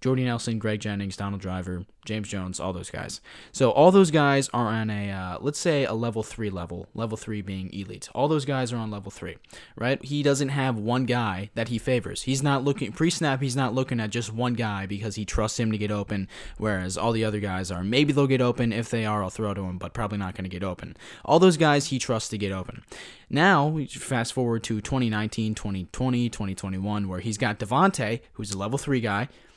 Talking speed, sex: 225 wpm, male